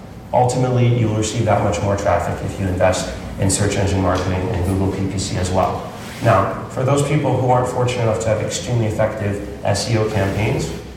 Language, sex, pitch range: English, male, 100-115 Hz